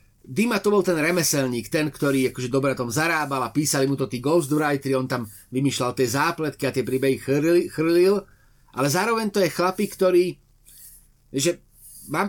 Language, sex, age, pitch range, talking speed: Slovak, male, 30-49, 135-180 Hz, 175 wpm